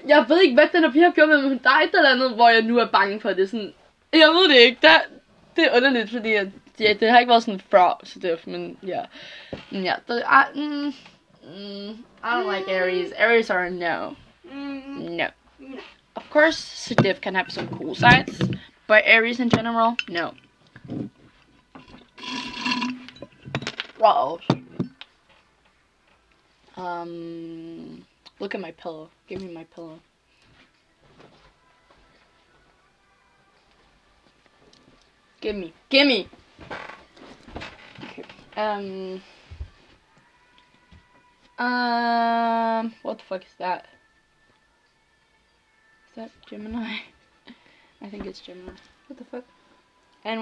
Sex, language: female, Danish